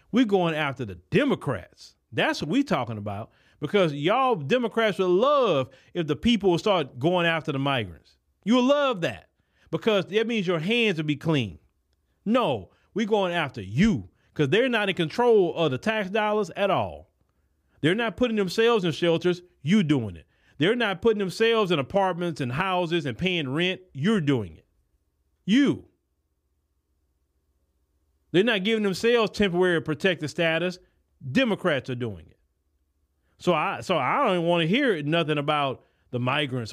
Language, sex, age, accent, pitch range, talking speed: English, male, 40-59, American, 130-195 Hz, 160 wpm